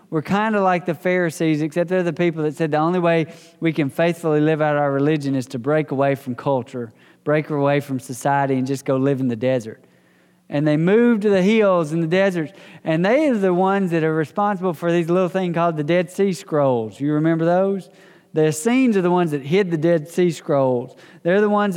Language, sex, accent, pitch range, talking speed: English, male, American, 160-195 Hz, 225 wpm